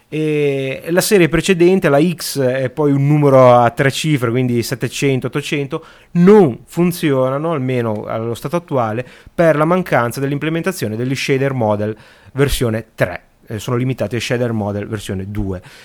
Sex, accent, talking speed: male, native, 145 wpm